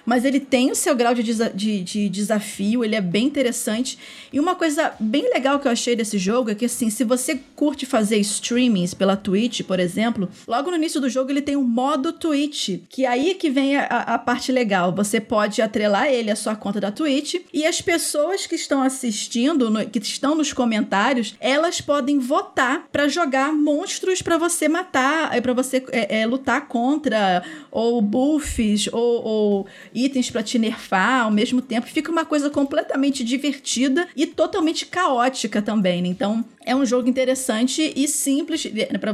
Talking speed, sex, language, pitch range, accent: 180 wpm, female, Portuguese, 220-285 Hz, Brazilian